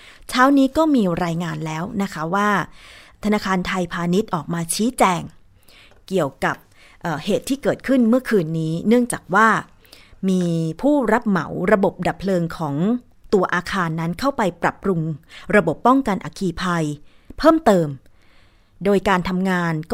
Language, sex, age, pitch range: Thai, female, 30-49, 165-220 Hz